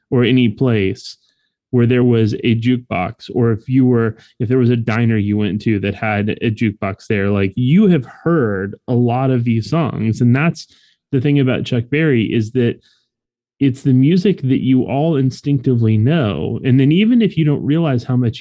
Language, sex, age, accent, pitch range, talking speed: English, male, 30-49, American, 110-135 Hz, 195 wpm